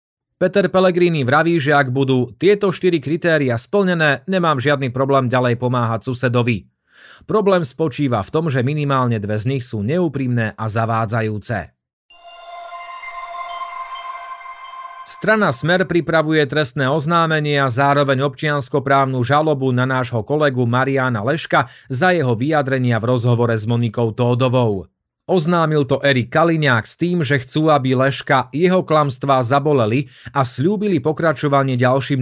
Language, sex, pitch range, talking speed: Slovak, male, 125-170 Hz, 125 wpm